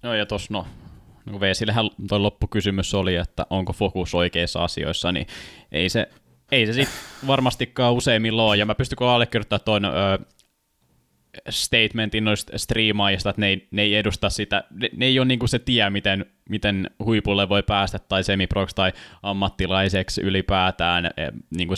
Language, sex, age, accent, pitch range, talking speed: Finnish, male, 20-39, native, 95-105 Hz, 155 wpm